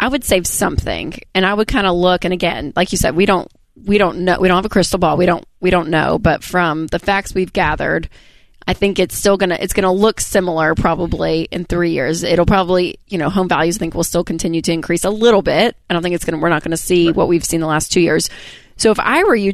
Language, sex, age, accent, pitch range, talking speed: English, female, 20-39, American, 170-200 Hz, 275 wpm